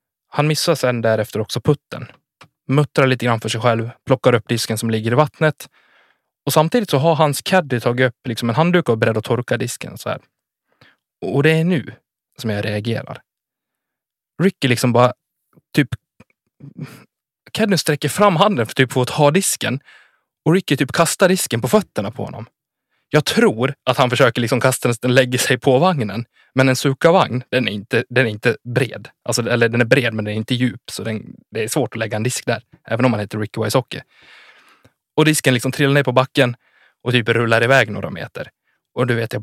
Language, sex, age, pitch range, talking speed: Swedish, male, 20-39, 115-145 Hz, 200 wpm